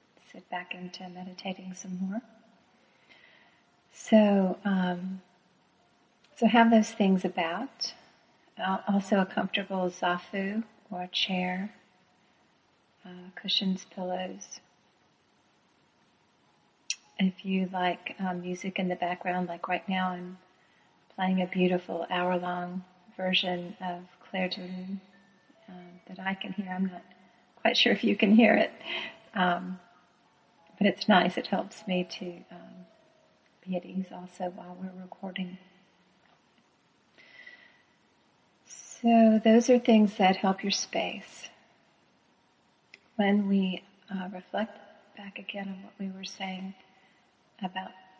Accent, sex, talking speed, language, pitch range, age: American, female, 115 wpm, English, 180-205 Hz, 40-59